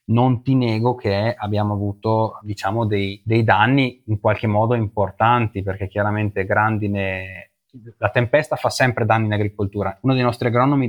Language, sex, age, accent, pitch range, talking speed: Italian, male, 20-39, native, 100-120 Hz, 155 wpm